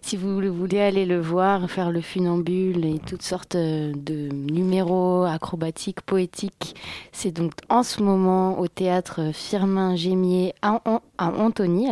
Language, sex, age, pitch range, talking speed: French, female, 20-39, 165-195 Hz, 135 wpm